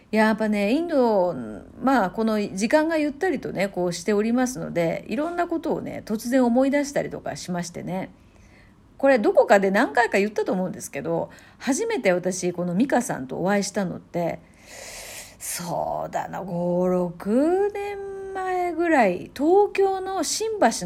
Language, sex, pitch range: Japanese, female, 195-310 Hz